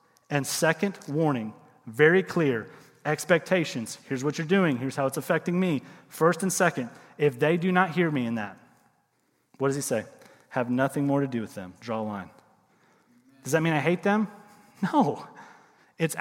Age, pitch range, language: 30-49, 135-180 Hz, English